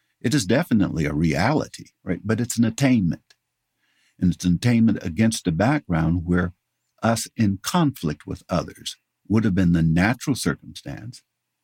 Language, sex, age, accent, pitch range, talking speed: English, male, 60-79, American, 90-115 Hz, 145 wpm